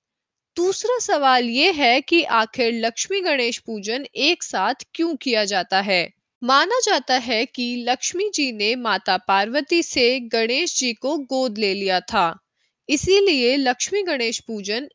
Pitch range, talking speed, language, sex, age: 215-310 Hz, 145 wpm, Hindi, female, 20-39